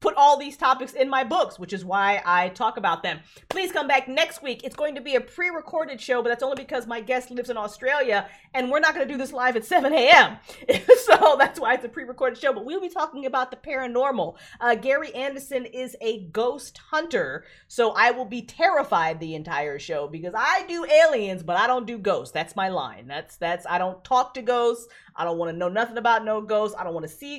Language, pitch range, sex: English, 180-270 Hz, female